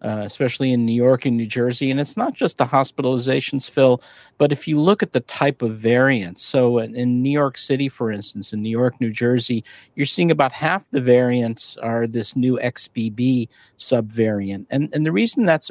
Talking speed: 205 wpm